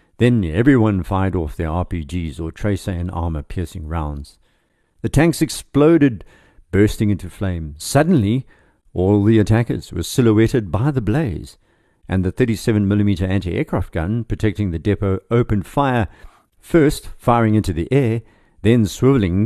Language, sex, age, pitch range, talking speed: English, male, 50-69, 90-115 Hz, 135 wpm